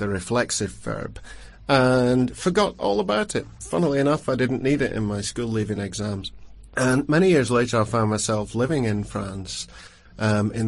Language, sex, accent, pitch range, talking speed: English, male, British, 105-125 Hz, 175 wpm